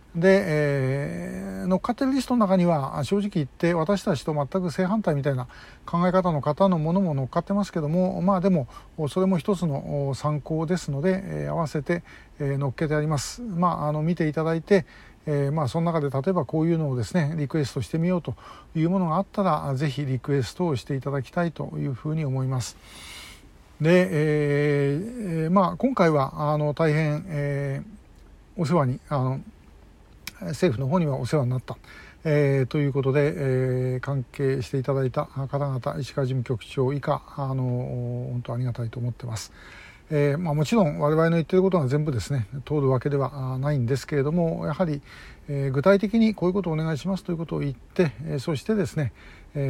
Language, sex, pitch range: Japanese, male, 135-170 Hz